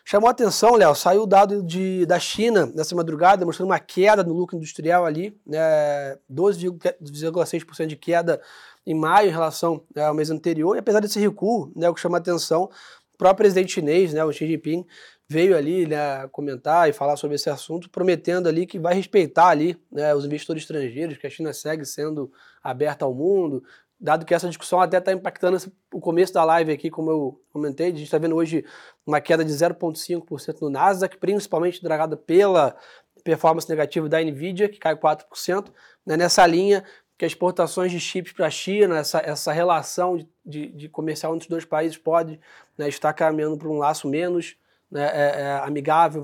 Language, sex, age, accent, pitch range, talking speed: Portuguese, male, 20-39, Brazilian, 155-180 Hz, 190 wpm